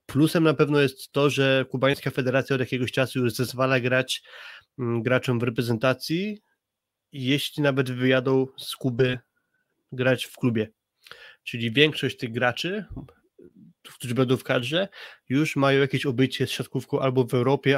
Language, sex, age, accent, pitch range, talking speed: Polish, male, 20-39, native, 120-135 Hz, 140 wpm